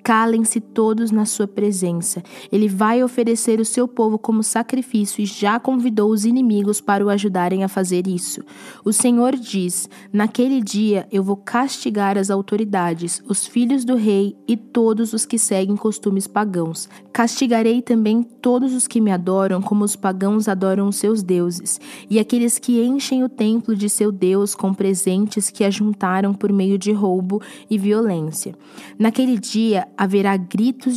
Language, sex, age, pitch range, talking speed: Portuguese, female, 20-39, 195-230 Hz, 160 wpm